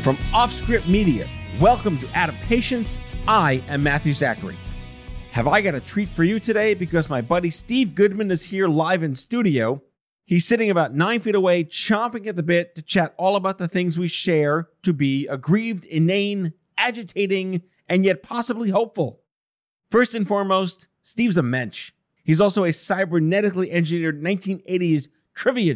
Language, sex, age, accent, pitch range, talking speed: English, male, 40-59, American, 145-200 Hz, 160 wpm